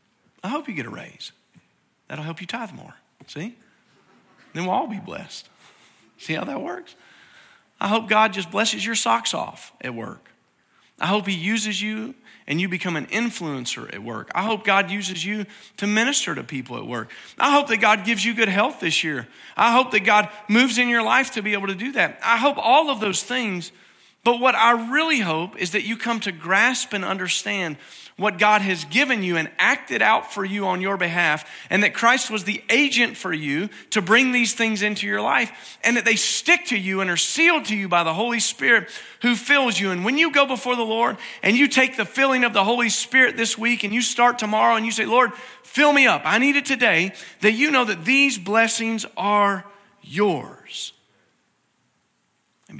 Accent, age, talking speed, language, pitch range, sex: American, 40-59, 210 wpm, English, 195-245 Hz, male